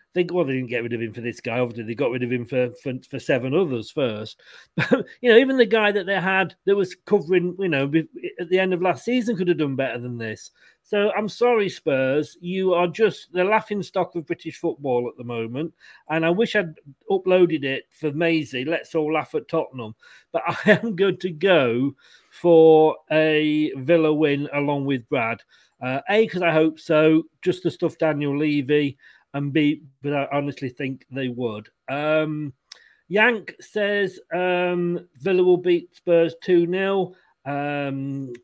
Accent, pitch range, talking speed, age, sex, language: British, 140-185 Hz, 185 wpm, 40-59, male, English